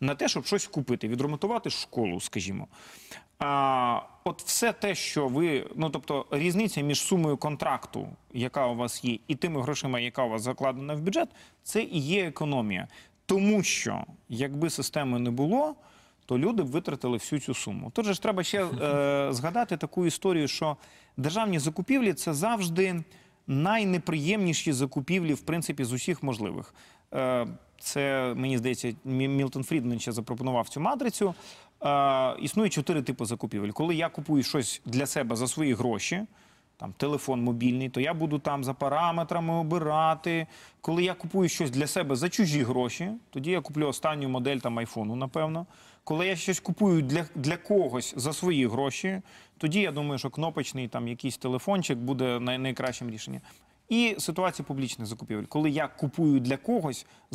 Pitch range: 130-175 Hz